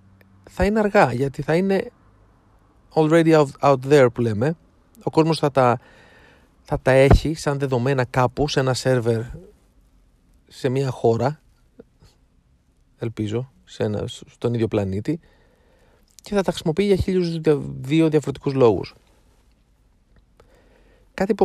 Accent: native